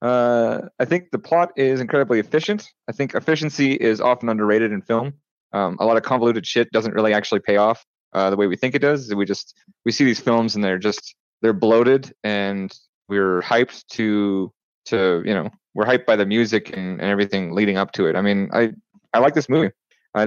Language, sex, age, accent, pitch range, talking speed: English, male, 30-49, American, 100-120 Hz, 215 wpm